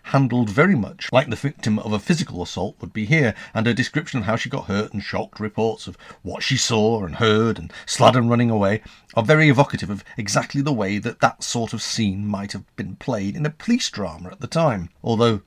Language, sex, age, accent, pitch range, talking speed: English, male, 40-59, British, 90-115 Hz, 225 wpm